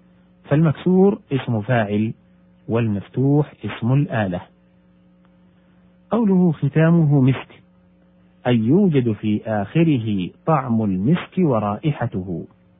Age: 50-69